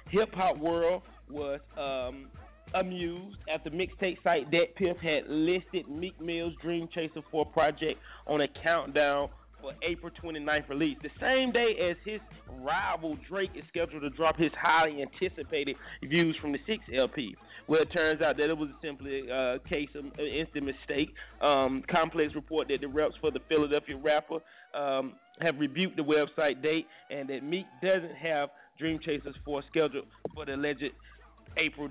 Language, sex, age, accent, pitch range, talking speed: English, male, 30-49, American, 140-170 Hz, 165 wpm